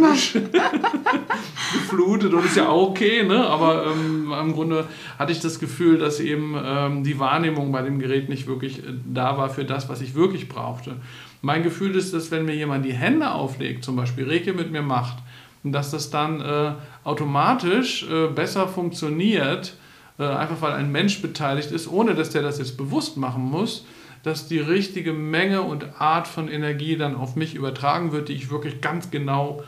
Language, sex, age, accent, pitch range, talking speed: German, male, 50-69, German, 135-165 Hz, 180 wpm